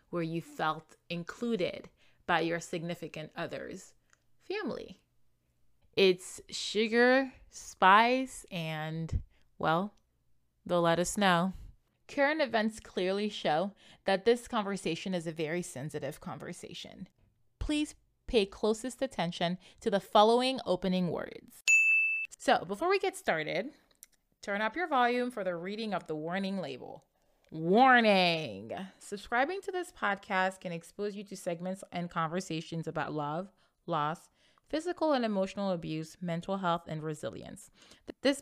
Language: English